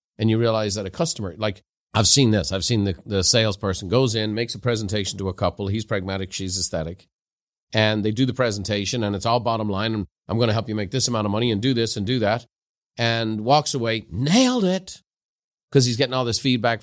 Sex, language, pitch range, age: male, English, 95-120 Hz, 40-59